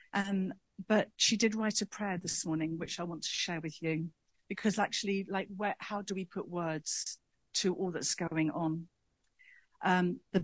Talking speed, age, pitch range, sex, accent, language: 185 wpm, 50-69, 165-200 Hz, female, British, English